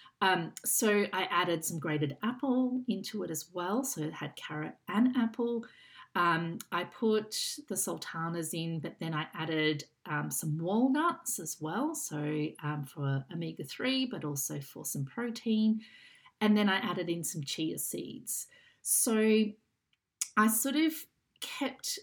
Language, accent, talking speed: English, Australian, 145 wpm